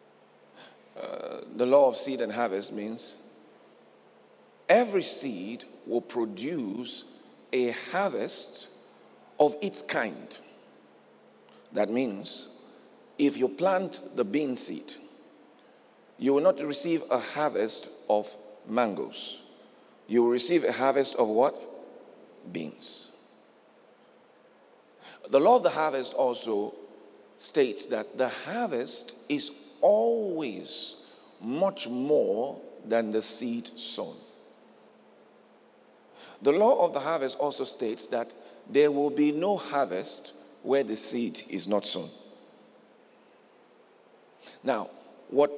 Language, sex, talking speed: English, male, 105 wpm